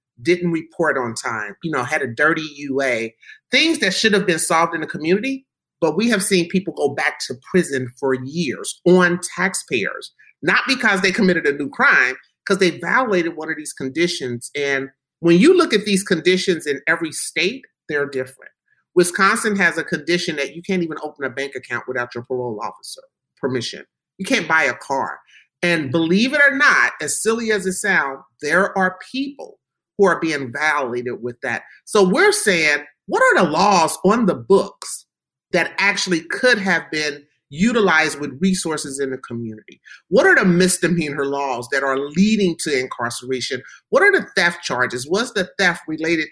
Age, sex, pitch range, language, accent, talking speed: 40-59, male, 145-195 Hz, English, American, 180 wpm